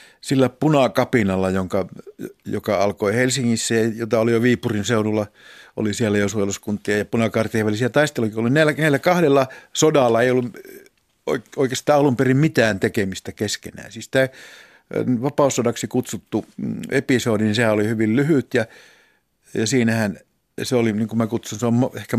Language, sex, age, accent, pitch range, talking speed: Finnish, male, 60-79, native, 105-130 Hz, 140 wpm